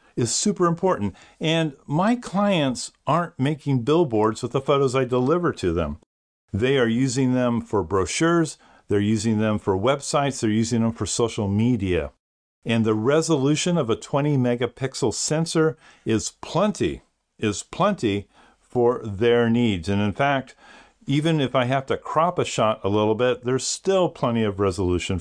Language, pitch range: English, 105-135 Hz